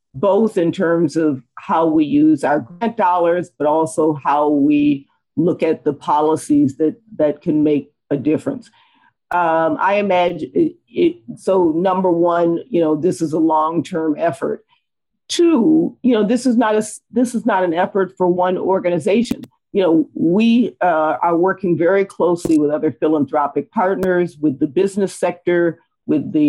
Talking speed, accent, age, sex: 165 wpm, American, 50-69, female